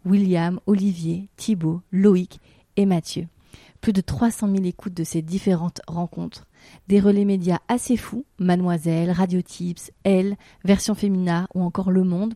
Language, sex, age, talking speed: French, female, 30-49, 145 wpm